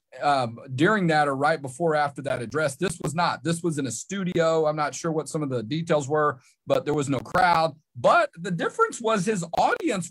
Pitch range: 130-165 Hz